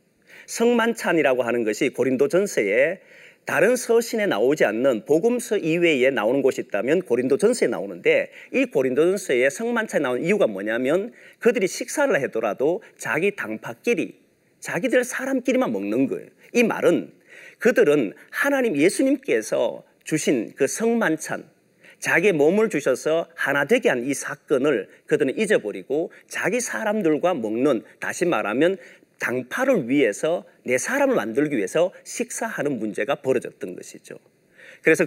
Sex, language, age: male, Korean, 40-59